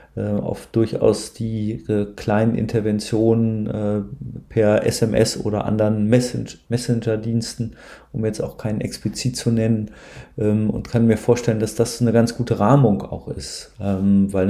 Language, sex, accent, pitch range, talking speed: German, male, German, 105-115 Hz, 125 wpm